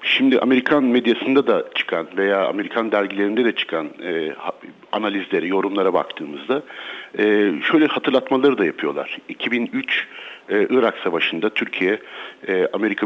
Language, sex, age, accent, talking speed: Turkish, male, 60-79, native, 110 wpm